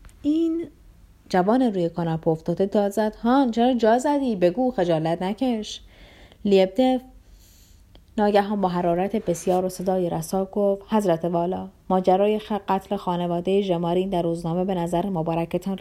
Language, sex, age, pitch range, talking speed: Persian, female, 30-49, 170-230 Hz, 135 wpm